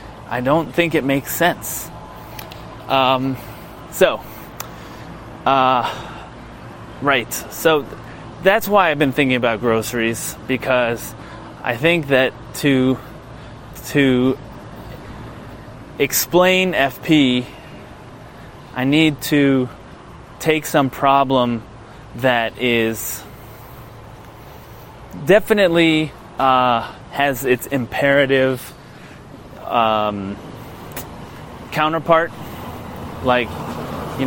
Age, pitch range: 20-39, 120-155 Hz